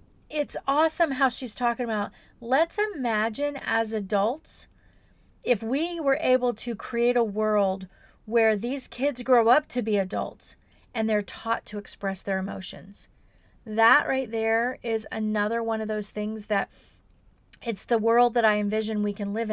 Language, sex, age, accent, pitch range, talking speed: English, female, 40-59, American, 210-245 Hz, 160 wpm